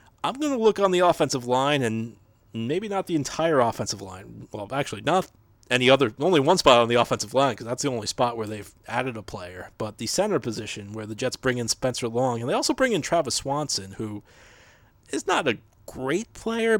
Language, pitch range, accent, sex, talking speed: English, 105-130 Hz, American, male, 220 wpm